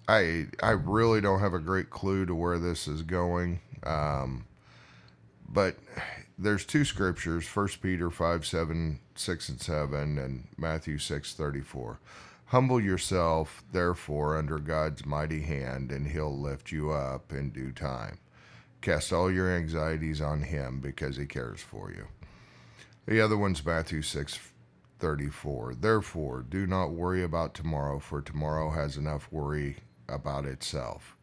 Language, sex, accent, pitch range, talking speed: English, male, American, 75-95 Hz, 140 wpm